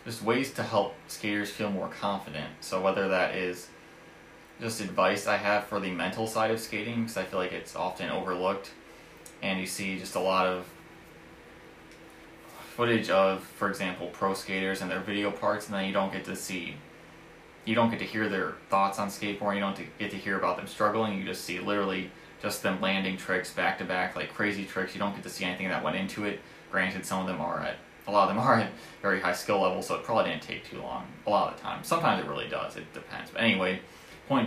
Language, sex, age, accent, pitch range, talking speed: English, male, 20-39, American, 95-110 Hz, 225 wpm